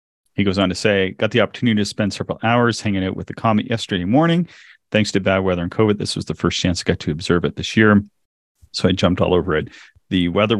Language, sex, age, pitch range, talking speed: English, male, 30-49, 85-110 Hz, 255 wpm